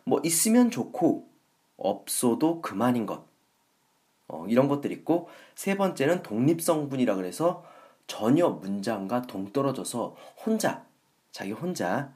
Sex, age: male, 40-59